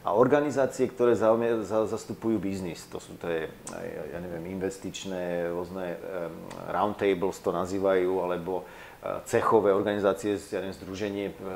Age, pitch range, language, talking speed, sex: 40-59, 100-125 Hz, Slovak, 110 wpm, male